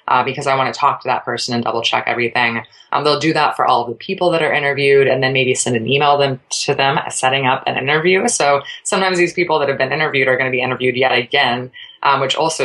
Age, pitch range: 20-39, 125-150 Hz